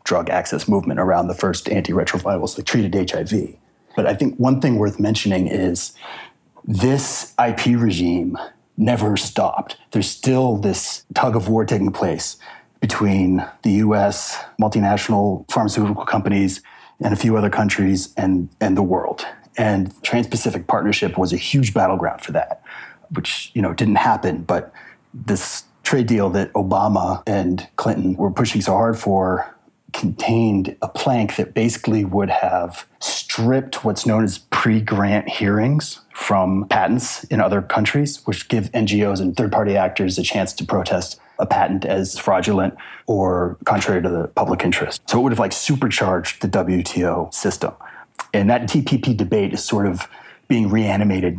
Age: 30-49